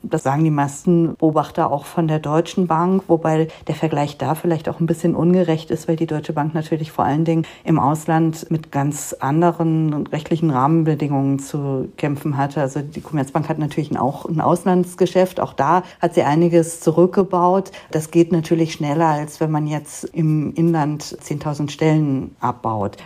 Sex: female